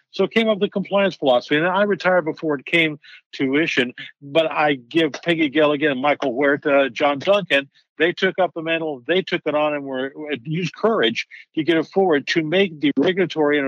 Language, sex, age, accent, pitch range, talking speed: English, male, 50-69, American, 135-175 Hz, 210 wpm